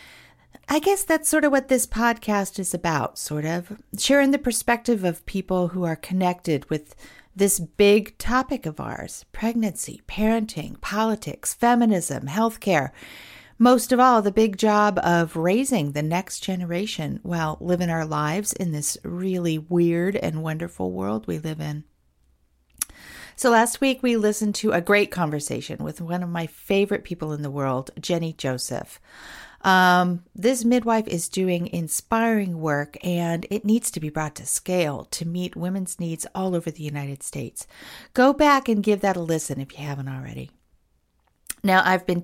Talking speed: 160 wpm